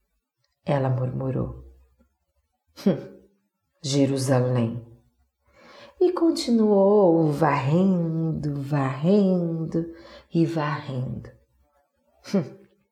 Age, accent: 40-59, Brazilian